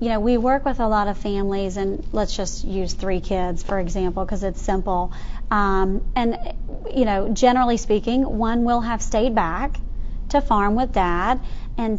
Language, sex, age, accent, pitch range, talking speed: English, female, 30-49, American, 200-245 Hz, 180 wpm